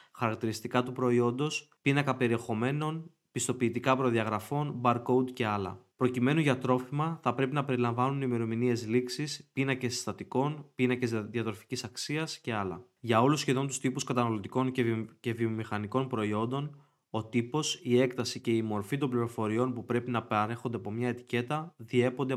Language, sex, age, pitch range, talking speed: Greek, male, 20-39, 115-135 Hz, 145 wpm